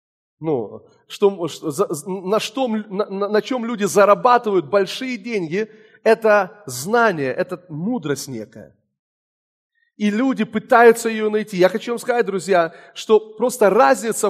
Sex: male